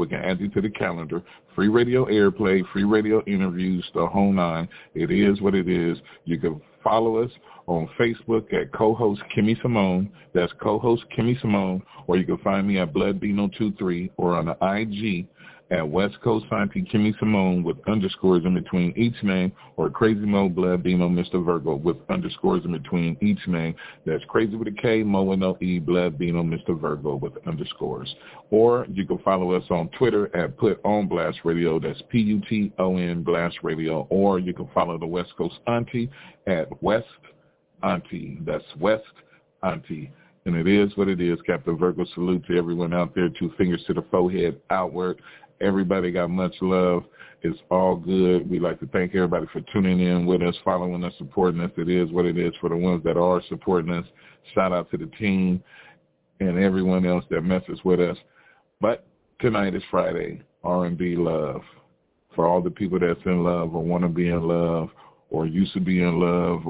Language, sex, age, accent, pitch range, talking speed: English, male, 40-59, American, 85-100 Hz, 190 wpm